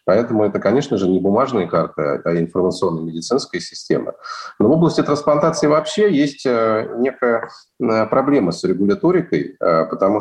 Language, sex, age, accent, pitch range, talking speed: Russian, male, 30-49, native, 90-120 Hz, 130 wpm